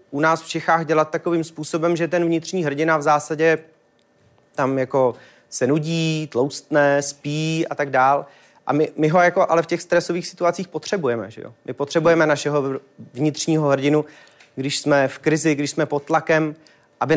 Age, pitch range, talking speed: 30-49, 145-170 Hz, 170 wpm